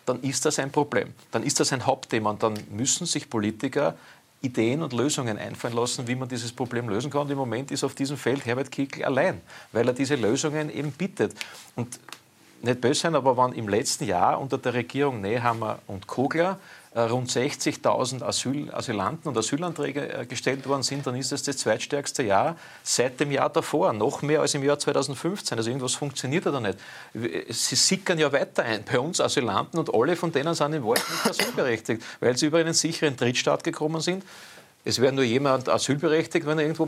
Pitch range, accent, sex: 125-160 Hz, Austrian, male